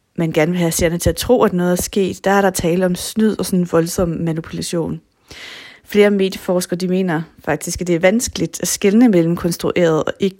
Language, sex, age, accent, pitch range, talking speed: Danish, female, 30-49, native, 170-215 Hz, 215 wpm